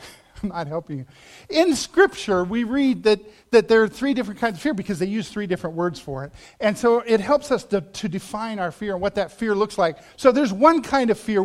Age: 50-69